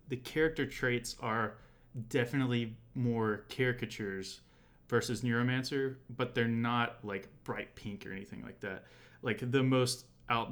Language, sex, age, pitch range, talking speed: English, male, 20-39, 110-130 Hz, 130 wpm